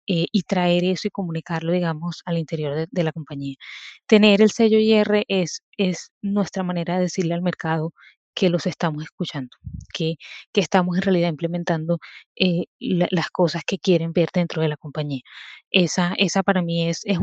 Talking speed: 180 wpm